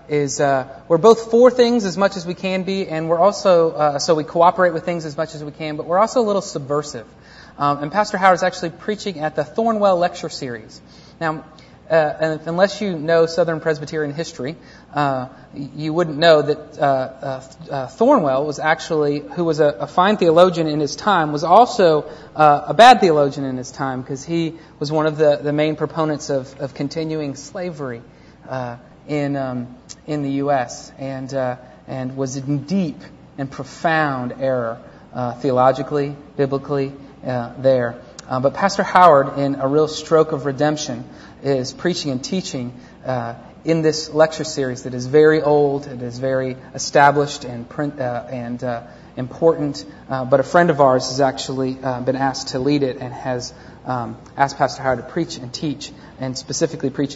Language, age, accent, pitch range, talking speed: English, 30-49, American, 130-165 Hz, 180 wpm